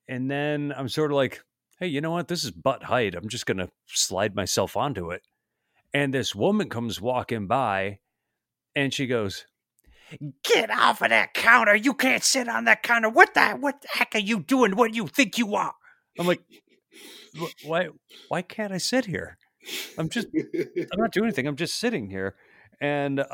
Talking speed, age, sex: 190 wpm, 40-59, male